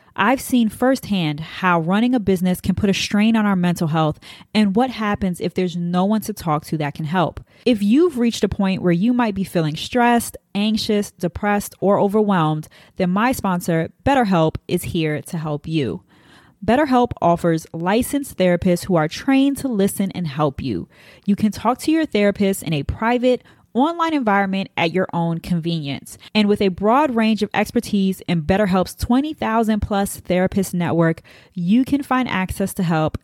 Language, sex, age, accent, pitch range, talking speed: English, female, 20-39, American, 170-230 Hz, 175 wpm